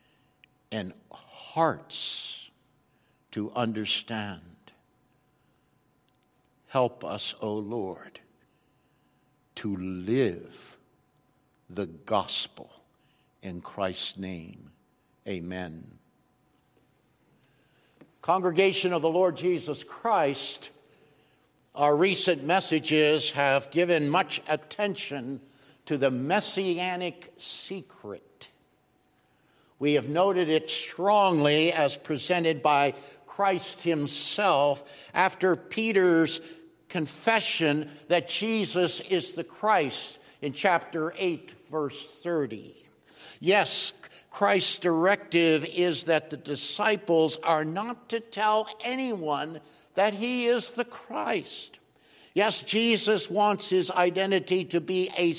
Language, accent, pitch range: English, American, 145-190 Hz